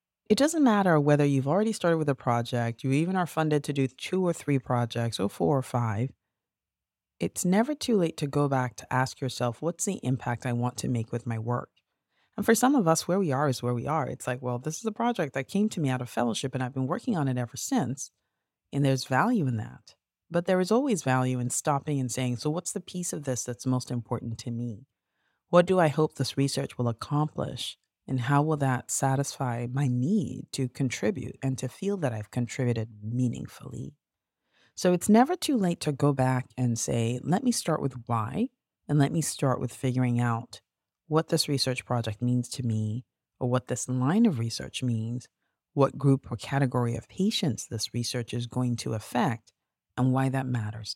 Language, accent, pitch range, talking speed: English, American, 120-160 Hz, 210 wpm